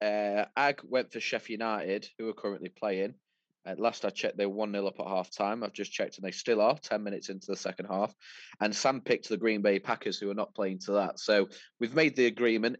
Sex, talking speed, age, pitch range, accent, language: male, 250 wpm, 20-39, 95-110 Hz, British, English